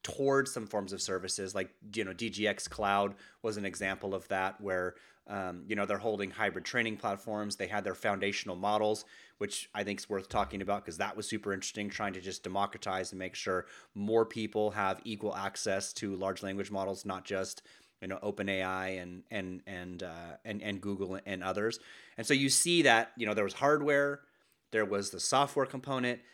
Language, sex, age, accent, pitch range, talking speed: English, male, 30-49, American, 95-115 Hz, 200 wpm